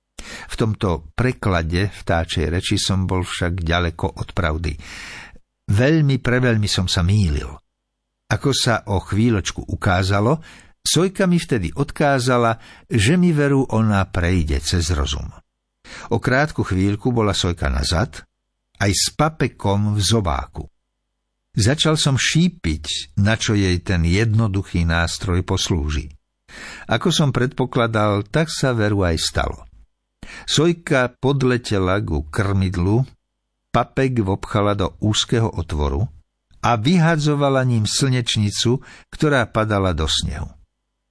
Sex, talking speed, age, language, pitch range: male, 115 wpm, 60-79, Slovak, 85-125 Hz